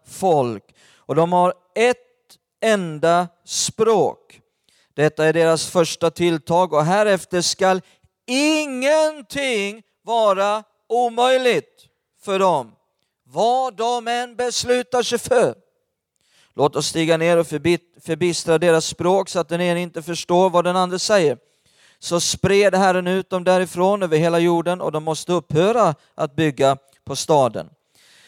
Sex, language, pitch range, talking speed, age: male, Swedish, 170-225 Hz, 130 wpm, 40-59